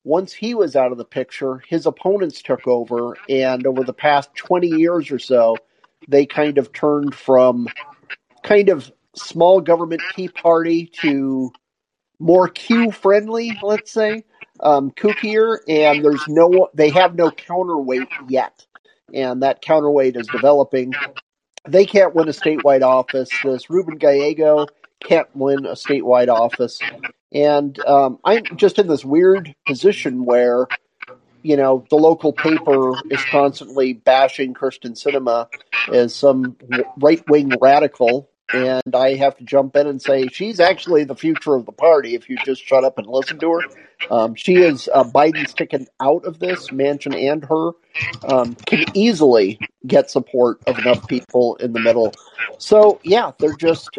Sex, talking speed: male, 155 wpm